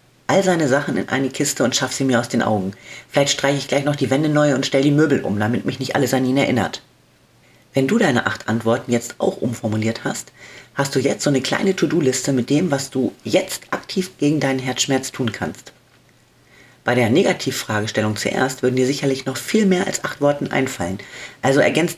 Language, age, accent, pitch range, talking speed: German, 40-59, German, 120-150 Hz, 210 wpm